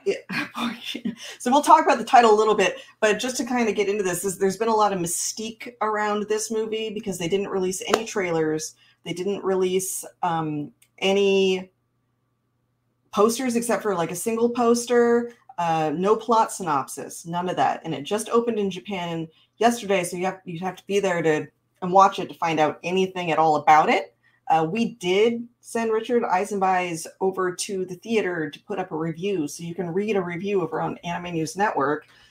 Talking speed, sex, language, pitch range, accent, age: 195 wpm, female, English, 165-220 Hz, American, 30-49